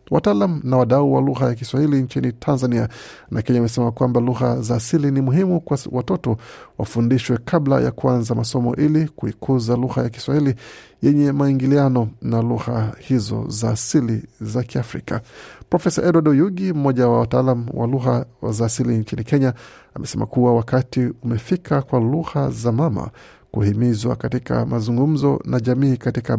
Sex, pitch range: male, 115-135 Hz